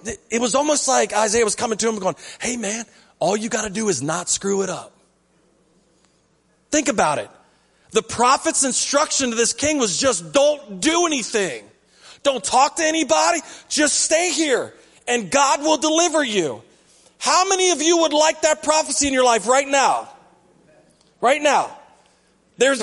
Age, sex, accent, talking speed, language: 30-49, male, American, 170 wpm, English